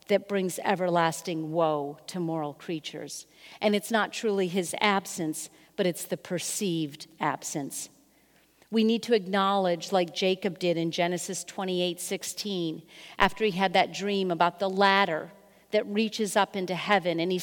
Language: English